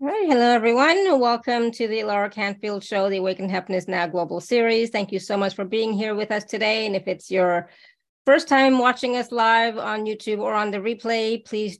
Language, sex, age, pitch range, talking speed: English, female, 30-49, 195-235 Hz, 215 wpm